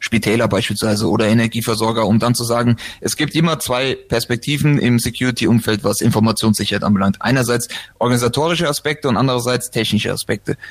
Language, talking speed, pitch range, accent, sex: German, 140 wpm, 115-145 Hz, German, male